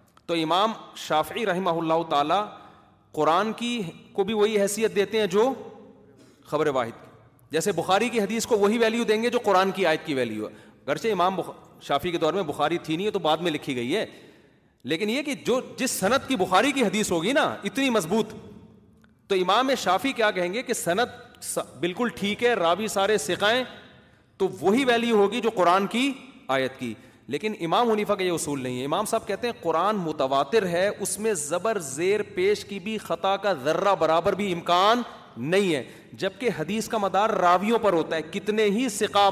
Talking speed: 195 wpm